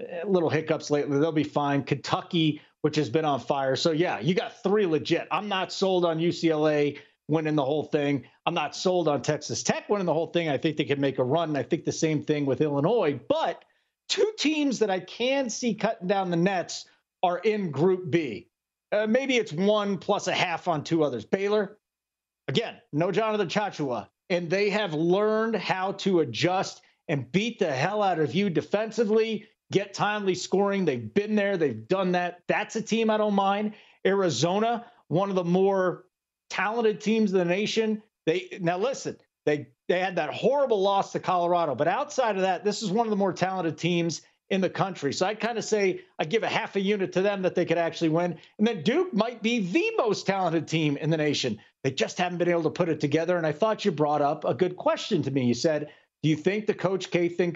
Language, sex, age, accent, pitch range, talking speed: English, male, 40-59, American, 155-205 Hz, 215 wpm